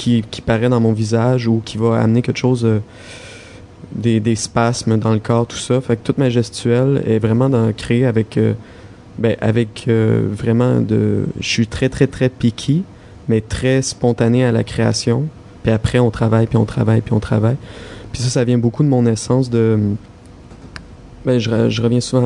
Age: 20-39